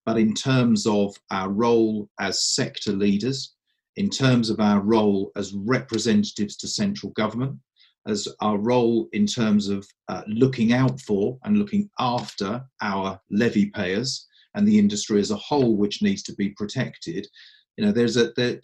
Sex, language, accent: male, English, British